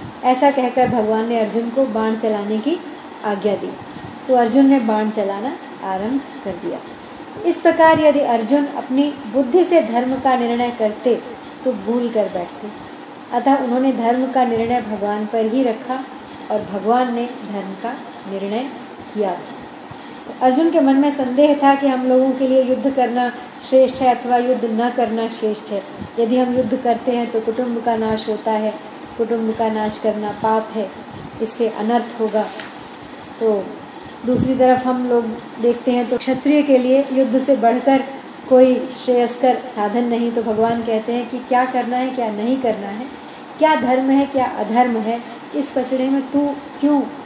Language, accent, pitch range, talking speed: Hindi, native, 225-275 Hz, 170 wpm